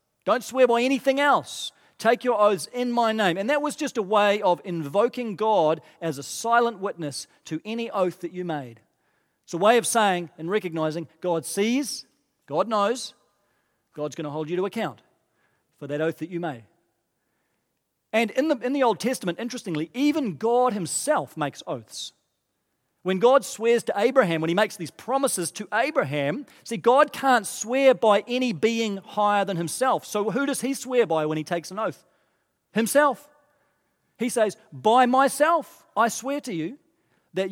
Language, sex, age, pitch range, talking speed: English, male, 40-59, 170-240 Hz, 175 wpm